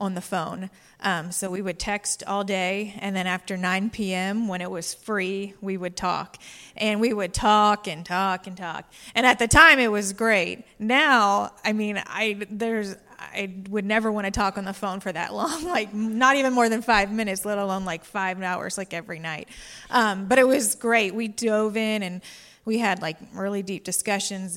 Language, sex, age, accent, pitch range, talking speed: English, female, 30-49, American, 180-215 Hz, 205 wpm